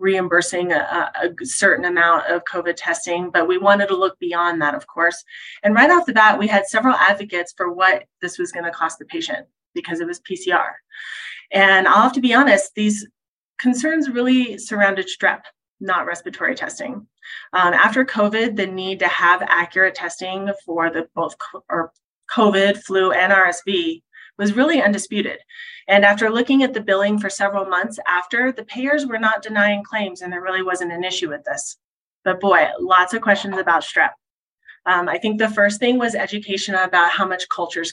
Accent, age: American, 30-49